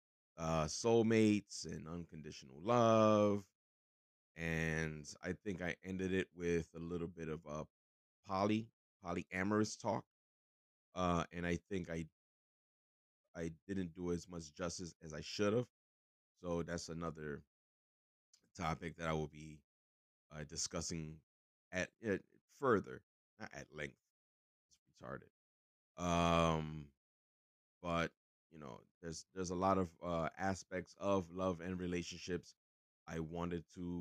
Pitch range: 80-95 Hz